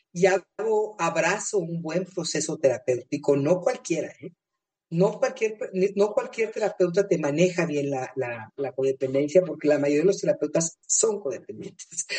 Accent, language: Mexican, Spanish